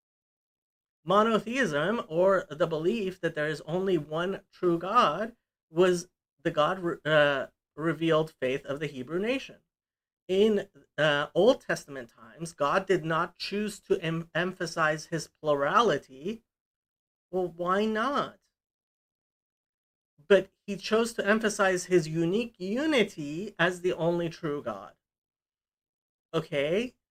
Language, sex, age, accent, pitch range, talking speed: English, male, 40-59, American, 160-200 Hz, 110 wpm